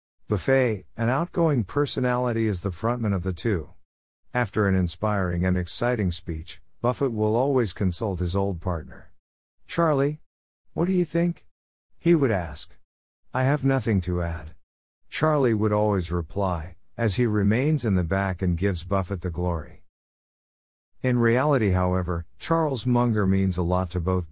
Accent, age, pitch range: American, 50-69, 85-115 Hz